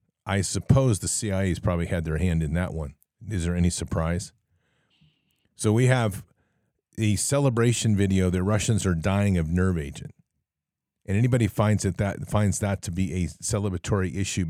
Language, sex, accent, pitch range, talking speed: English, male, American, 90-105 Hz, 155 wpm